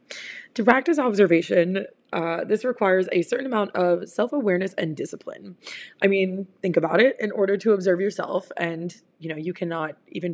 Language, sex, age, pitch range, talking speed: English, female, 20-39, 170-205 Hz, 170 wpm